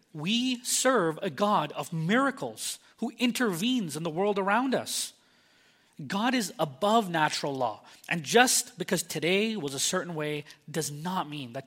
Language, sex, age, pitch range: English, male, 30-49, 145-195 Hz